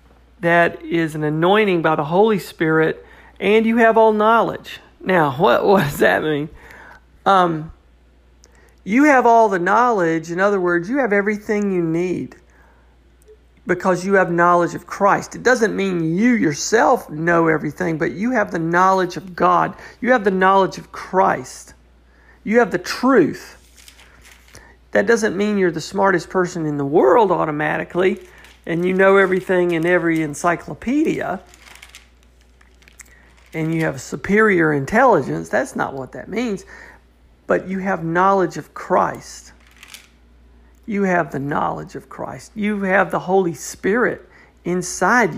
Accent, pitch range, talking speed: American, 145-200 Hz, 145 wpm